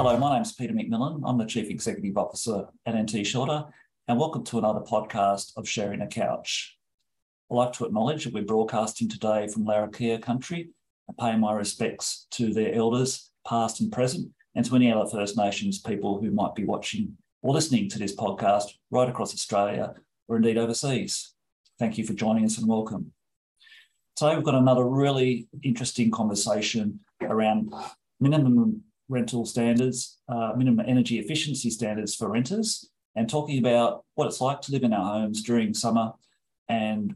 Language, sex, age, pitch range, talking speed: English, male, 40-59, 110-130 Hz, 170 wpm